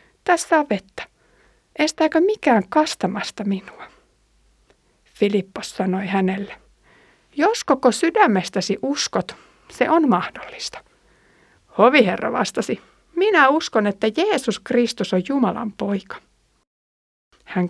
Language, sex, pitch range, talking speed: Finnish, female, 200-265 Hz, 95 wpm